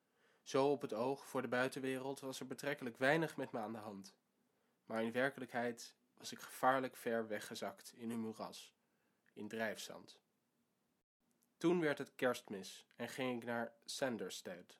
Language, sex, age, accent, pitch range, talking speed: Dutch, male, 20-39, Dutch, 120-145 Hz, 155 wpm